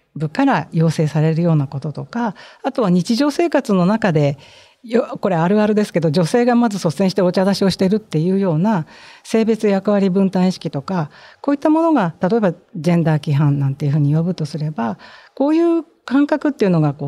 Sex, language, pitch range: female, Japanese, 165-240 Hz